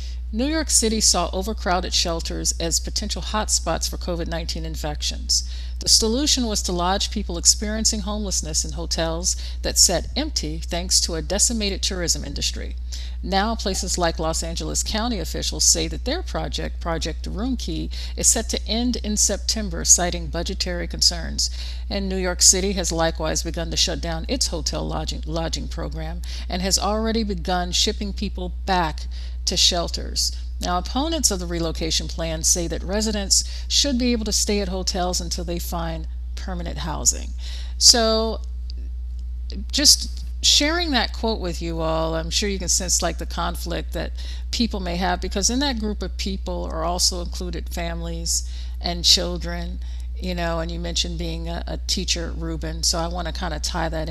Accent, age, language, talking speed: American, 50-69, English, 165 wpm